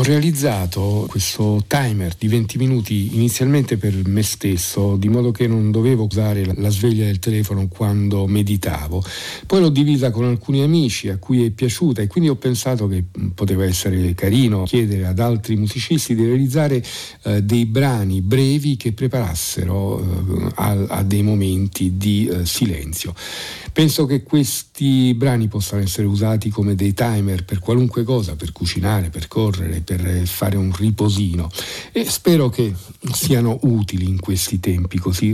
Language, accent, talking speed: Italian, native, 155 wpm